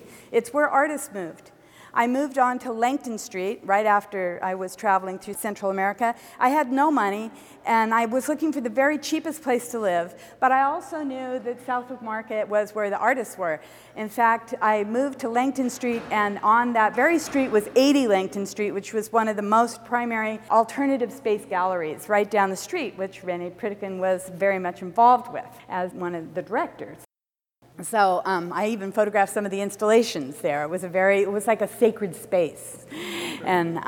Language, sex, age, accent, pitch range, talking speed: English, female, 50-69, American, 200-255 Hz, 195 wpm